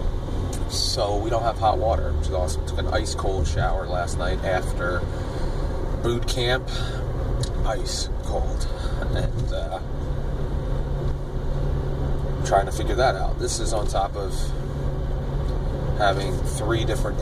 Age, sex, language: 30-49, male, English